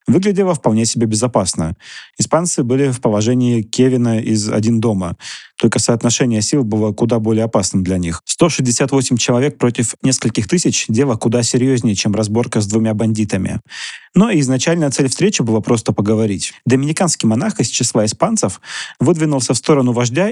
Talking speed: 150 wpm